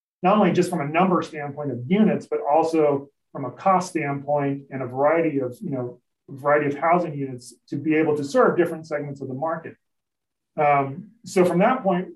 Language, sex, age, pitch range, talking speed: English, male, 30-49, 145-175 Hz, 200 wpm